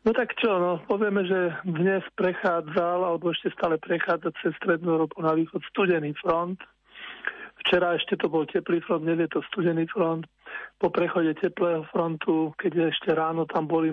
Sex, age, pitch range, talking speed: male, 40-59, 170-195 Hz, 170 wpm